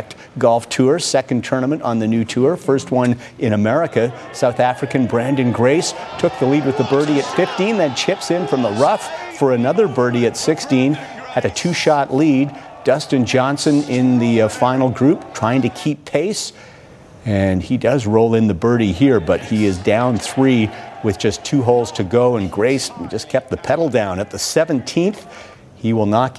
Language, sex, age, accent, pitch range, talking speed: English, male, 50-69, American, 115-140 Hz, 185 wpm